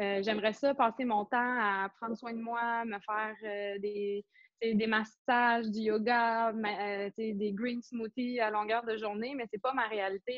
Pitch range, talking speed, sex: 210-245 Hz, 195 wpm, female